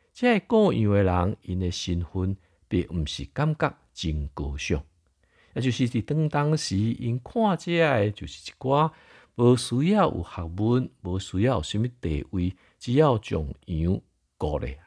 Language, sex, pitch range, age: Chinese, male, 85-120 Hz, 50-69